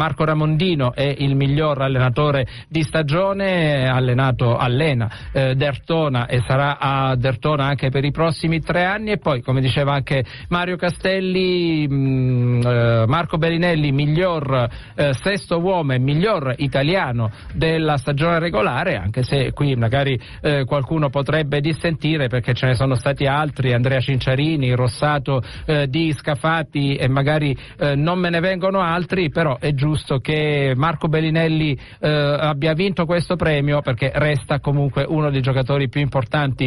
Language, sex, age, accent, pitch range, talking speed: Italian, male, 50-69, native, 135-165 Hz, 150 wpm